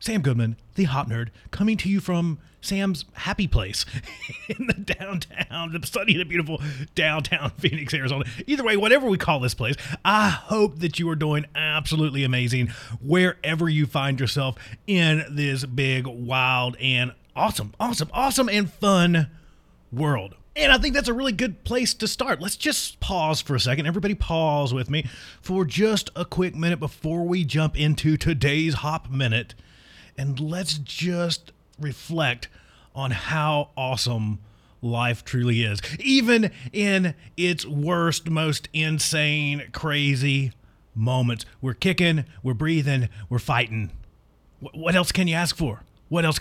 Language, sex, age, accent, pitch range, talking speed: English, male, 30-49, American, 125-175 Hz, 150 wpm